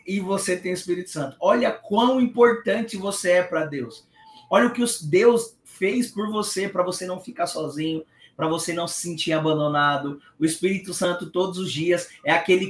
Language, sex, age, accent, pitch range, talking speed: Portuguese, male, 20-39, Brazilian, 175-210 Hz, 185 wpm